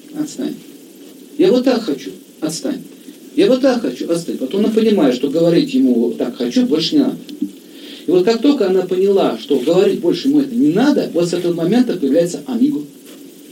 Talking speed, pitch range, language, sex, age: 185 wpm, 215-300 Hz, Russian, male, 50-69